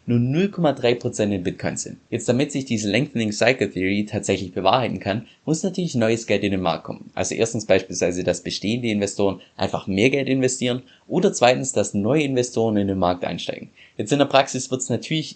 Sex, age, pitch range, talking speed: male, 20-39, 105-145 Hz, 190 wpm